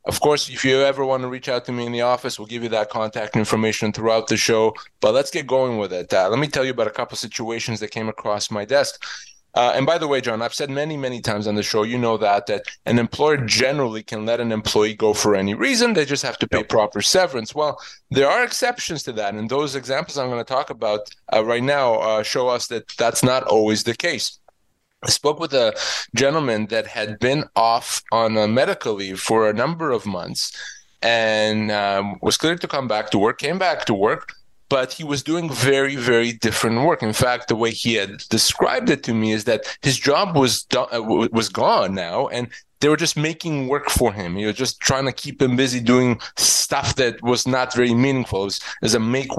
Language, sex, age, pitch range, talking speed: English, male, 20-39, 110-140 Hz, 230 wpm